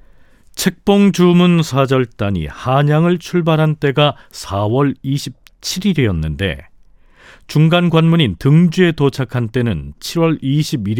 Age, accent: 40-59, native